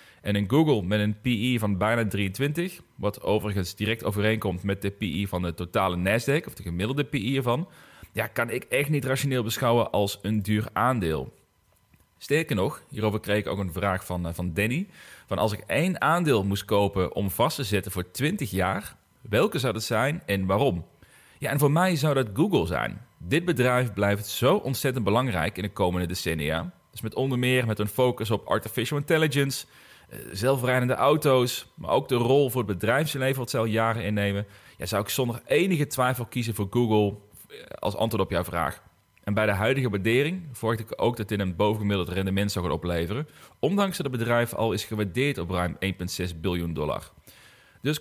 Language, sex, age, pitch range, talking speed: Dutch, male, 30-49, 100-135 Hz, 190 wpm